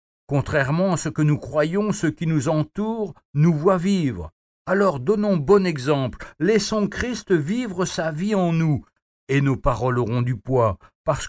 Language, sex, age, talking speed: French, male, 60-79, 165 wpm